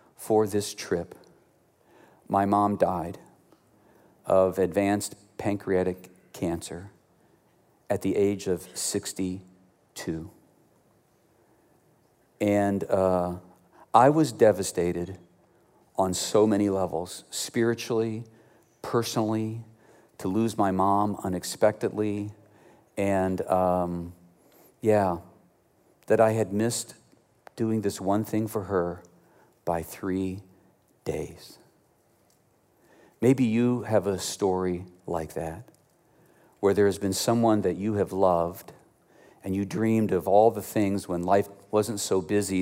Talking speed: 105 wpm